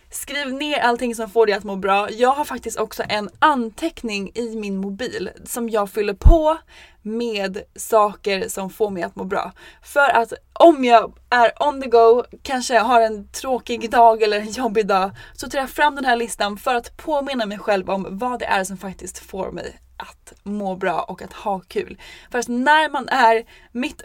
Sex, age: female, 20-39